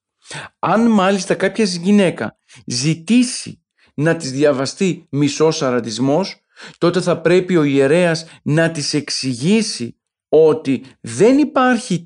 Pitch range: 135-175 Hz